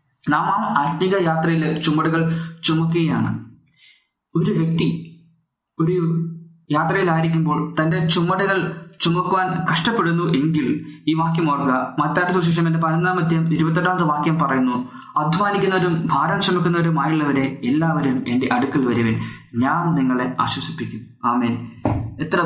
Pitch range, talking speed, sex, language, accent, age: 140-170 Hz, 100 wpm, male, Malayalam, native, 20-39